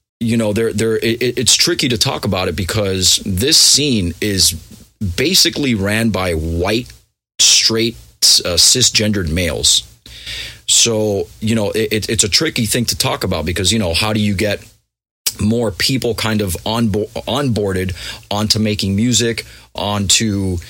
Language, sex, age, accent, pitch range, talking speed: English, male, 30-49, American, 95-115 Hz, 150 wpm